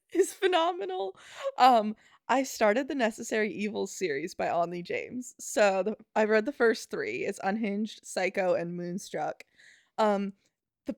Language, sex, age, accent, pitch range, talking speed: English, female, 20-39, American, 190-225 Hz, 135 wpm